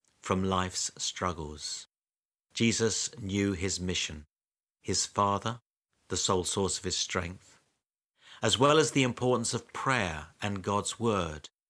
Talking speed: 130 wpm